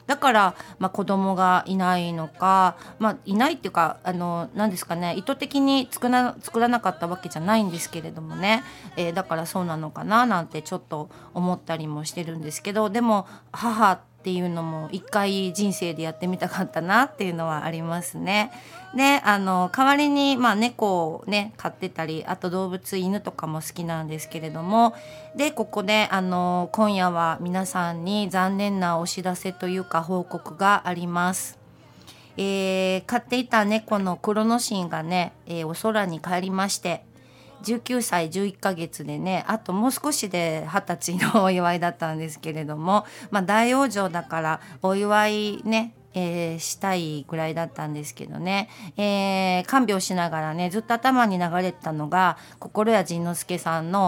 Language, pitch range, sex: Japanese, 170-215 Hz, female